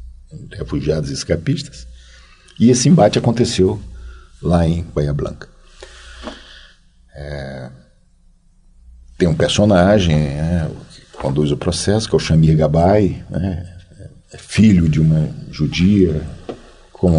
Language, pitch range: Portuguese, 75-100 Hz